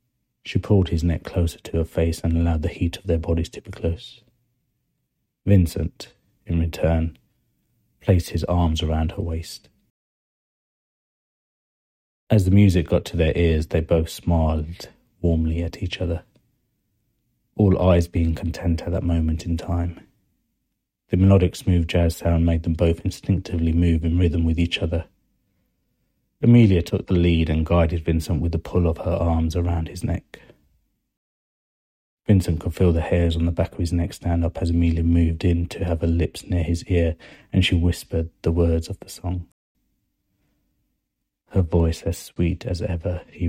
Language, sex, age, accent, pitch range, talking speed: English, male, 30-49, British, 80-90 Hz, 165 wpm